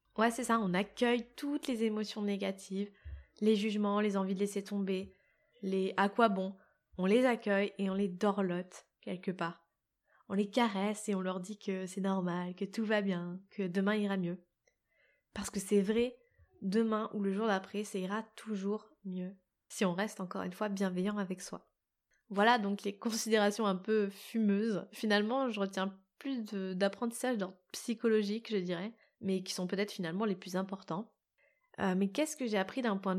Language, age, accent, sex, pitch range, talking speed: French, 20-39, French, female, 190-220 Hz, 185 wpm